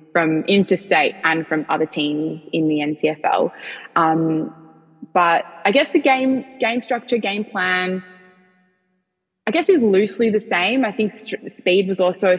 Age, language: 20-39, English